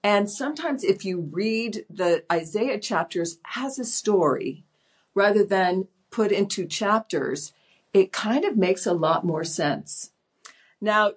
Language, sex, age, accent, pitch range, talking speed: English, female, 50-69, American, 175-220 Hz, 135 wpm